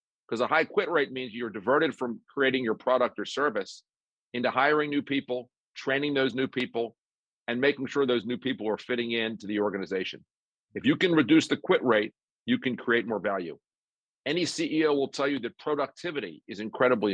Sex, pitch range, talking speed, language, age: male, 115-135 Hz, 190 wpm, English, 50-69